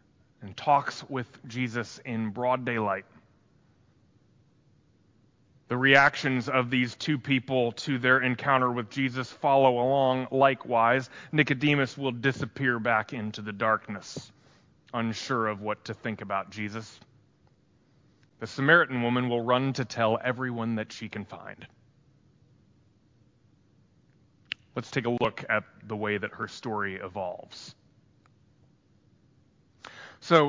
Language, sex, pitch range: English, male, 115-145 Hz